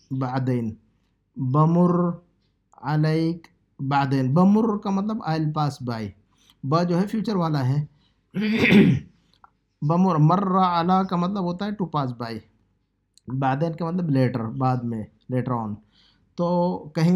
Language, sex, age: Urdu, male, 50-69